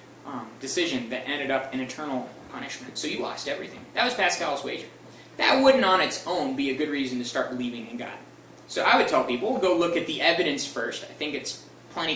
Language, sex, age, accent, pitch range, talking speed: English, male, 20-39, American, 135-185 Hz, 220 wpm